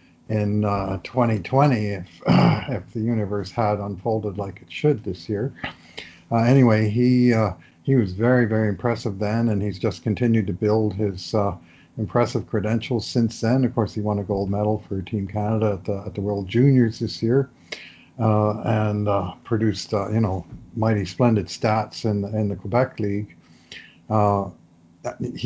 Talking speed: 165 wpm